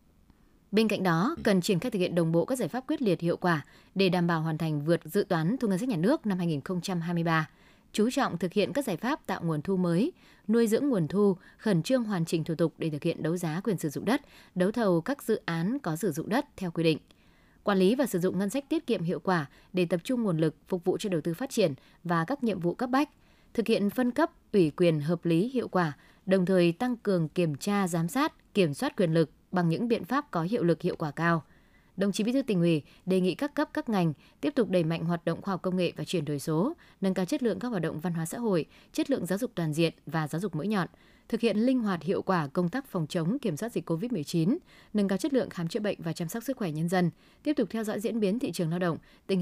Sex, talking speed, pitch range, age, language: female, 270 wpm, 165-220 Hz, 20-39, Vietnamese